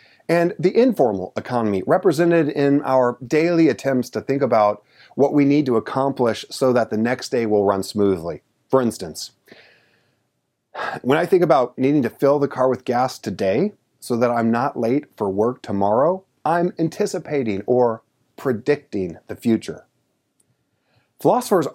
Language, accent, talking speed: English, American, 150 wpm